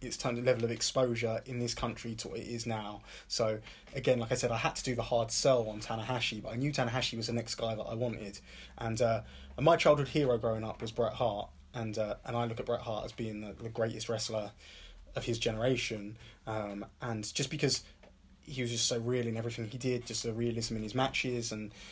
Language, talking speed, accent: English, 240 wpm, British